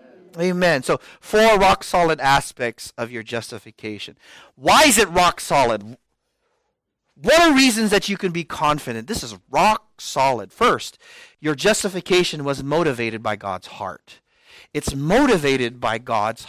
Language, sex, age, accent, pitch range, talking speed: English, male, 30-49, American, 115-160 Hz, 125 wpm